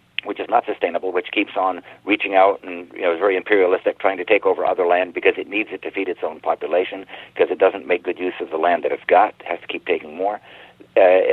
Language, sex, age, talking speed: English, male, 50-69, 255 wpm